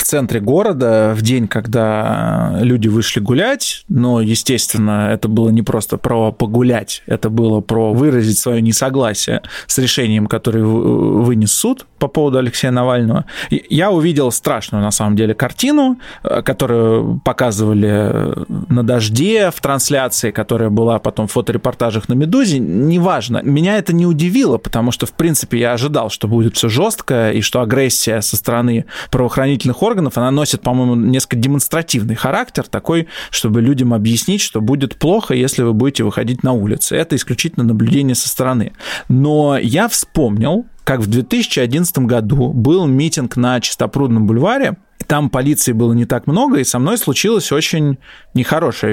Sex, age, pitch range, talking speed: male, 20-39, 115-145 Hz, 150 wpm